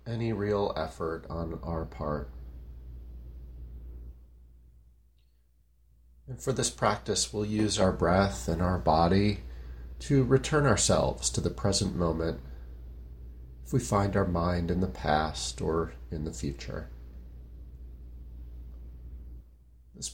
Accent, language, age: American, English, 40-59